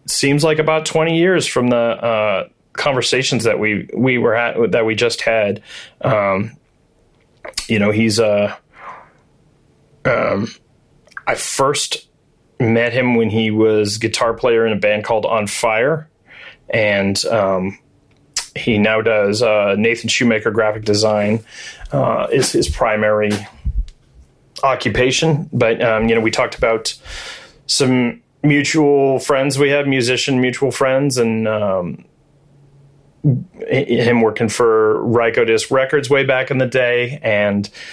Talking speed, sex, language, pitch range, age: 130 wpm, male, English, 110-145 Hz, 30-49